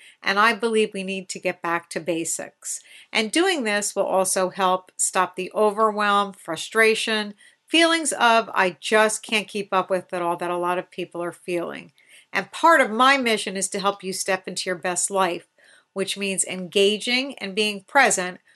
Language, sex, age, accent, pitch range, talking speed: English, female, 50-69, American, 185-225 Hz, 185 wpm